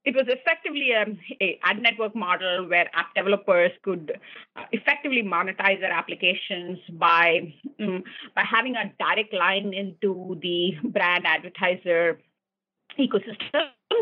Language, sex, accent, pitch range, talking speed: English, female, Indian, 190-250 Hz, 110 wpm